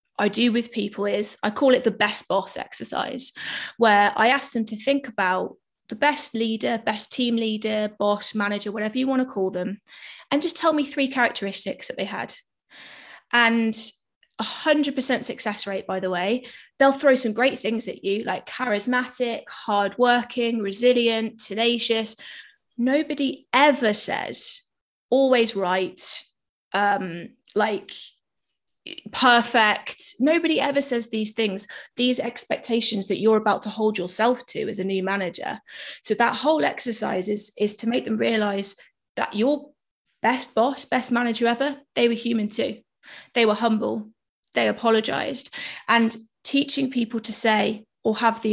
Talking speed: 150 wpm